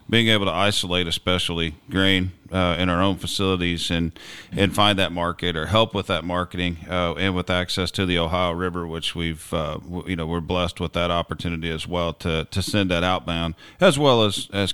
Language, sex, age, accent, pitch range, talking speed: English, male, 40-59, American, 90-105 Hz, 210 wpm